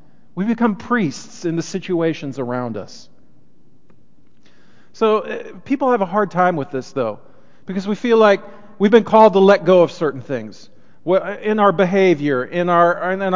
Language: English